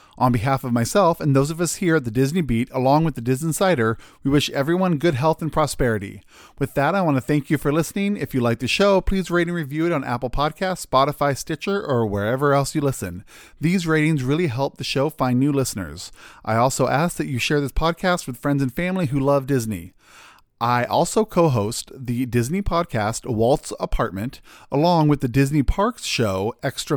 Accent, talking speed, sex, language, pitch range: American, 205 wpm, male, English, 120-165 Hz